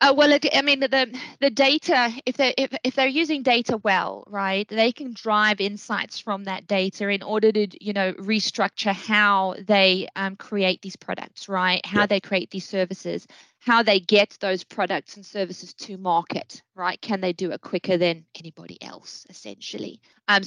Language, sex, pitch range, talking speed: English, female, 185-220 Hz, 180 wpm